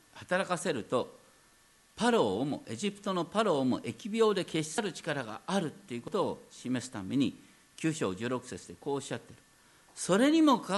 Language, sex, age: Japanese, male, 50-69